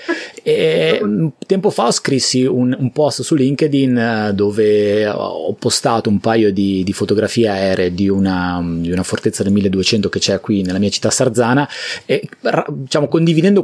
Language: Italian